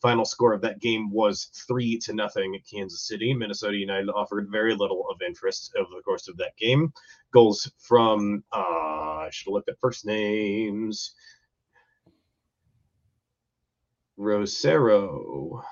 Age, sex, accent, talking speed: 30-49, male, American, 135 wpm